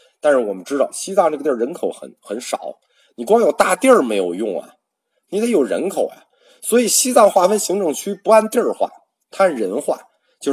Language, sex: Chinese, male